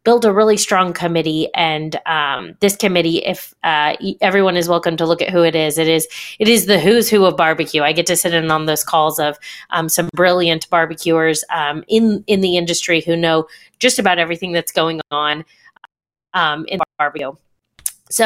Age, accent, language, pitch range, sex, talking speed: 30-49, American, English, 165-200 Hz, female, 185 wpm